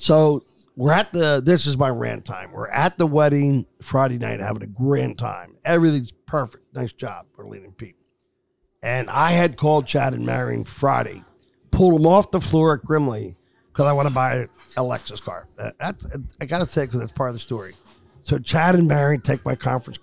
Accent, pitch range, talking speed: American, 140-200 Hz, 200 wpm